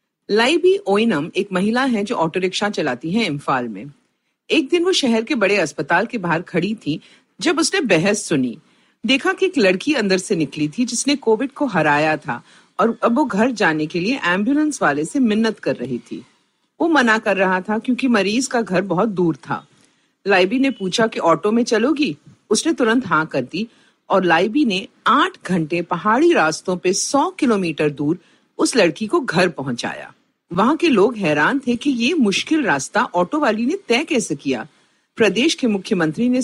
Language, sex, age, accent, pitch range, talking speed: Hindi, female, 50-69, native, 170-255 Hz, 185 wpm